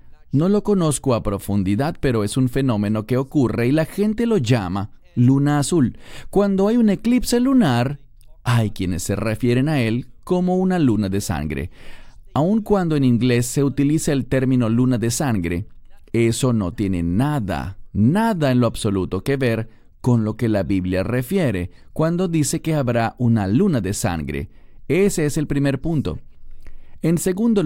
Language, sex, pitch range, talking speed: English, male, 105-155 Hz, 165 wpm